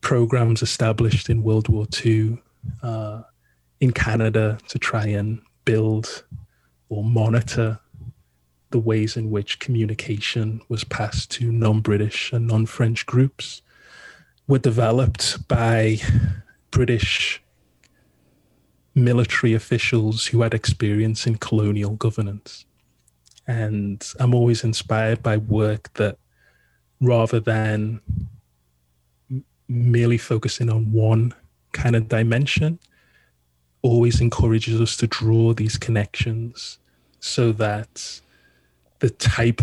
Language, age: English, 30-49